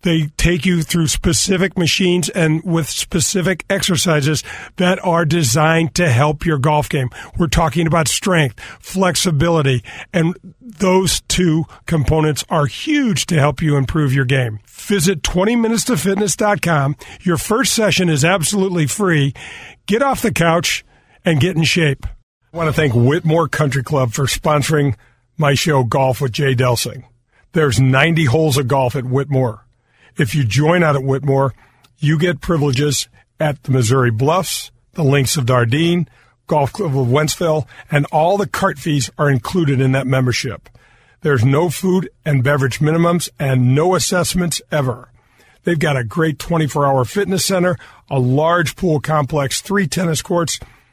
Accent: American